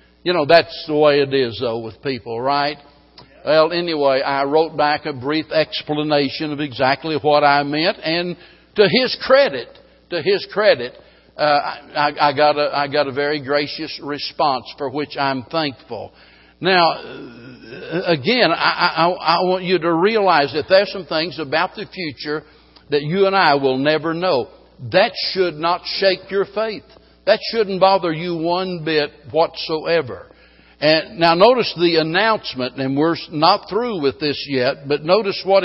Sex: male